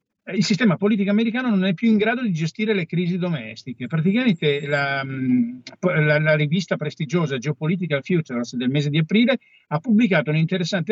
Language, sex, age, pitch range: Italian, male, 50-69, 145-195 Hz